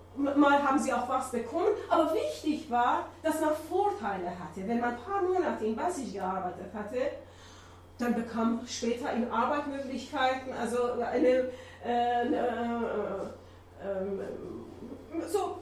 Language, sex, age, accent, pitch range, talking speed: German, female, 30-49, German, 205-310 Hz, 125 wpm